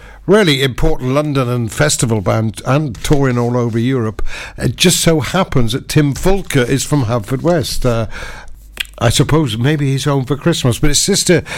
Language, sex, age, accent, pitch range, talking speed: English, male, 60-79, British, 115-150 Hz, 170 wpm